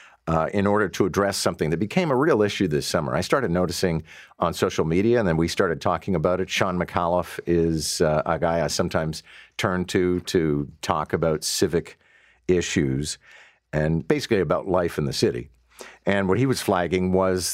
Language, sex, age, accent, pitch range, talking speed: English, male, 50-69, American, 80-95 Hz, 185 wpm